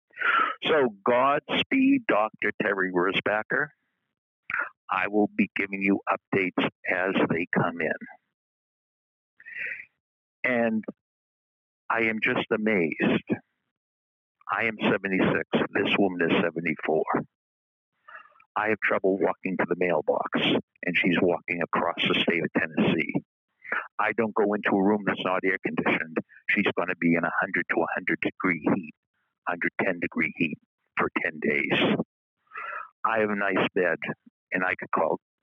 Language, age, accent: English, 60-79, American